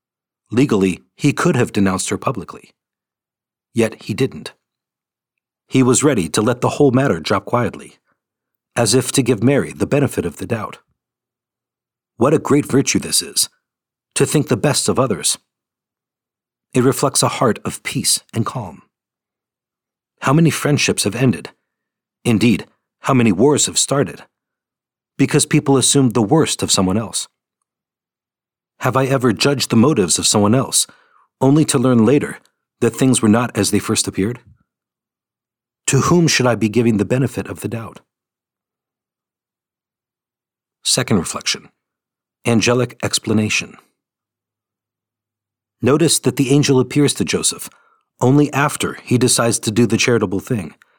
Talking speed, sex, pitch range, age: 140 wpm, male, 110-135 Hz, 50-69